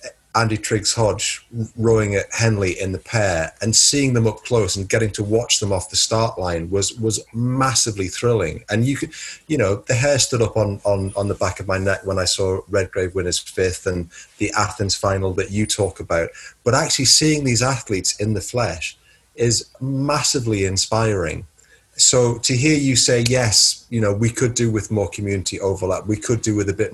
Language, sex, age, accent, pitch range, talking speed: English, male, 30-49, British, 100-120 Hz, 205 wpm